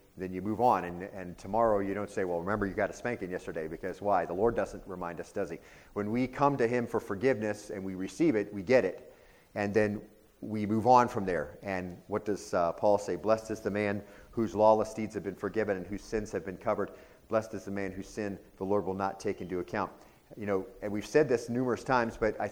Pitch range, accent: 100-115 Hz, American